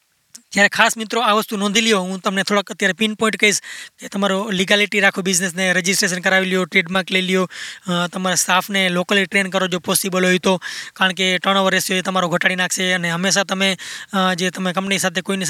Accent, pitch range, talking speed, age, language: native, 190-215 Hz, 190 wpm, 20-39, Gujarati